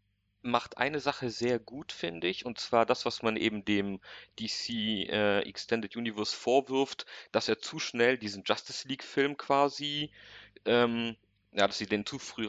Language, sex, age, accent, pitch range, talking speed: German, male, 40-59, German, 100-120 Hz, 165 wpm